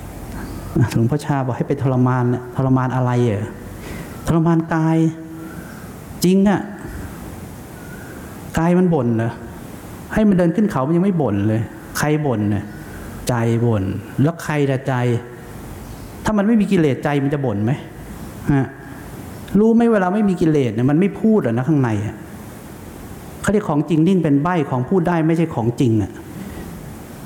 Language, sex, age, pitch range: English, male, 60-79, 140-200 Hz